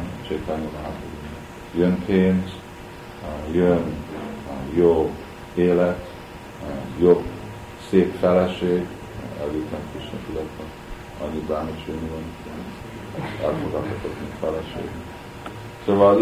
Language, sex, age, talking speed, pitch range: Hungarian, male, 50-69, 60 wpm, 80-95 Hz